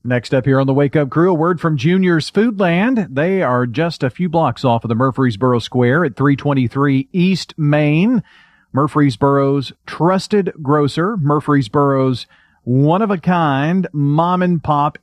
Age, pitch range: 40-59, 120-160 Hz